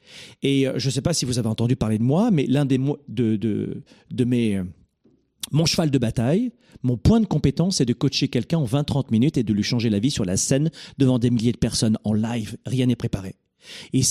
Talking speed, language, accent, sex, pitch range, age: 235 wpm, French, French, male, 125-165 Hz, 40-59